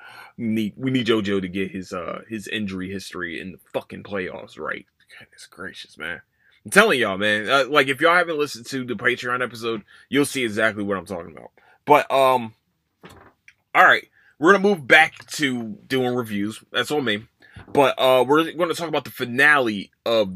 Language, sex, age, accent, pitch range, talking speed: English, male, 20-39, American, 105-140 Hz, 190 wpm